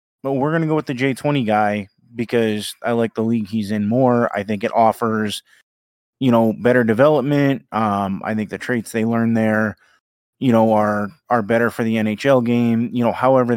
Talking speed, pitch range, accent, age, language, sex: 200 wpm, 110-135 Hz, American, 20-39, English, male